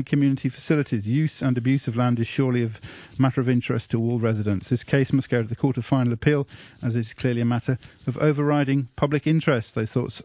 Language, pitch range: English, 125-155 Hz